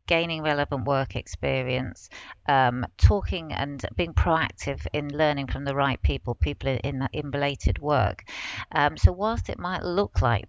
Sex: female